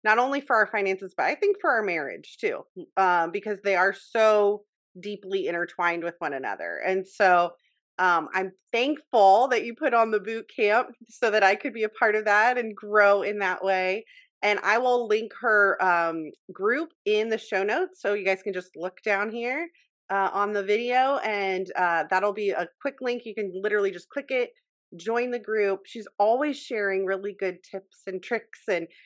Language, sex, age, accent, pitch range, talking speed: English, female, 30-49, American, 190-245 Hz, 200 wpm